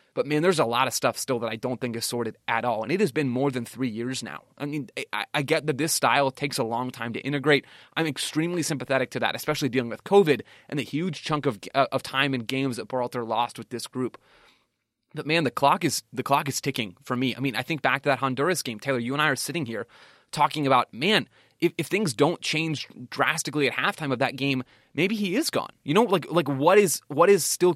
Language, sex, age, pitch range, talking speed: English, male, 20-39, 125-155 Hz, 255 wpm